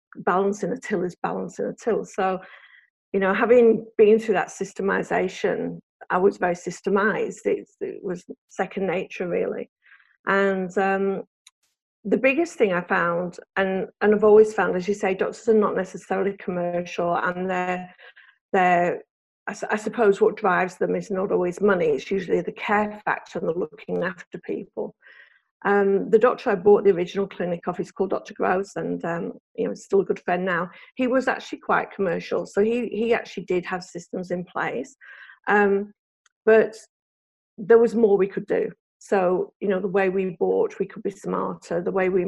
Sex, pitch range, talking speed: female, 185-220 Hz, 180 wpm